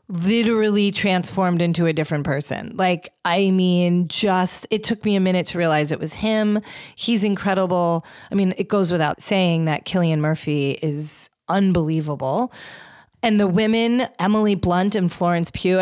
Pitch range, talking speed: 155-200 Hz, 155 wpm